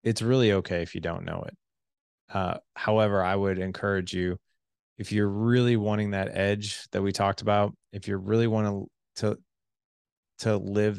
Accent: American